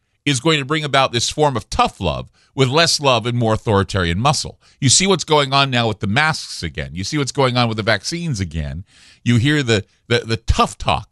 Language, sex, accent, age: English, male, American, 50-69